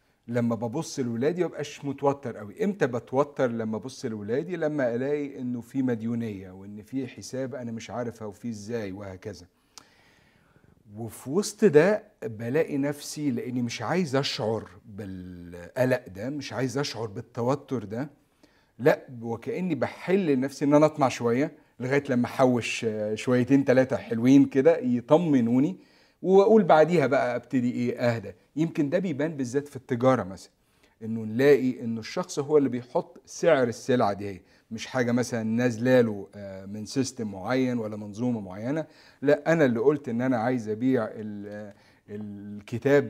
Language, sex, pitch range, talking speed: Arabic, male, 115-145 Hz, 140 wpm